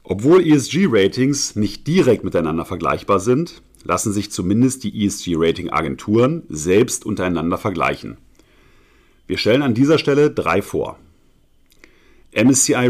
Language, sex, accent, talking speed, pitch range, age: German, male, German, 105 wpm, 100-135 Hz, 40-59